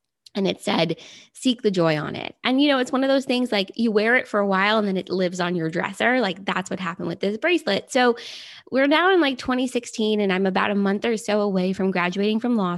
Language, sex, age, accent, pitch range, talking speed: English, female, 20-39, American, 185-235 Hz, 260 wpm